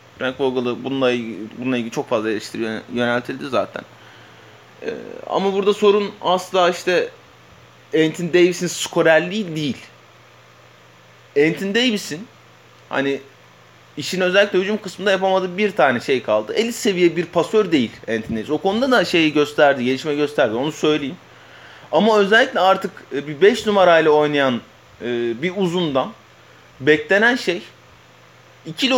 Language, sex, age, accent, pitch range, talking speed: Turkish, male, 30-49, native, 145-200 Hz, 125 wpm